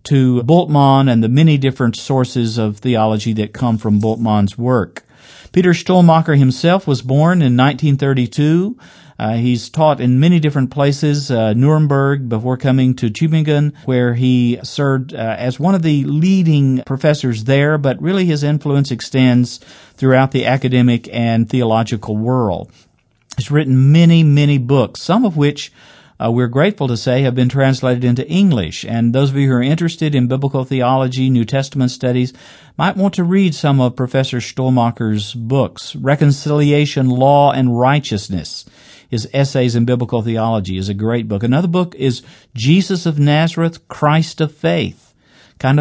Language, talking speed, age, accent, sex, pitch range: English, 155 wpm, 50-69, American, male, 120-150 Hz